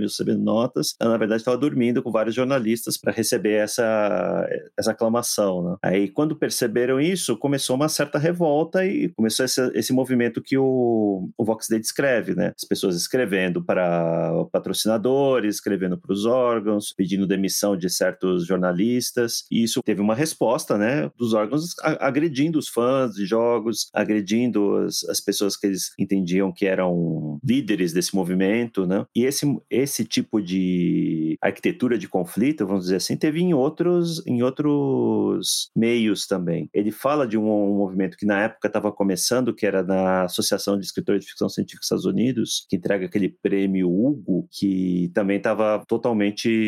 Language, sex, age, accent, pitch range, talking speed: Portuguese, male, 30-49, Brazilian, 100-125 Hz, 165 wpm